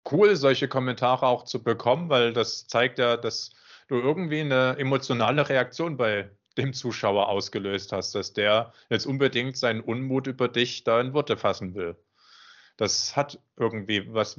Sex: male